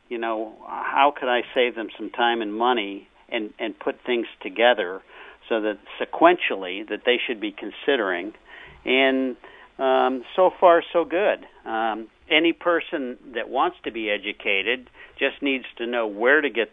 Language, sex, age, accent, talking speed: English, male, 50-69, American, 160 wpm